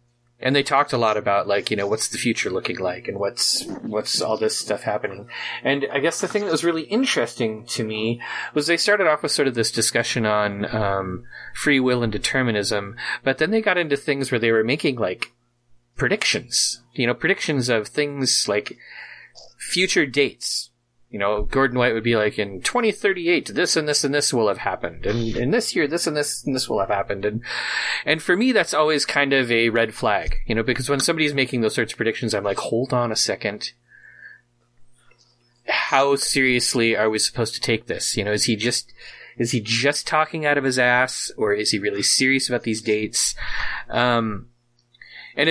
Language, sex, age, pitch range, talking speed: English, male, 30-49, 115-145 Hz, 205 wpm